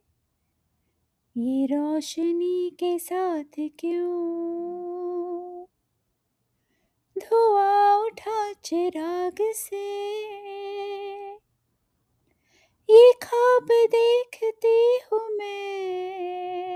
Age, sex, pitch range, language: 20-39, female, 285-400 Hz, English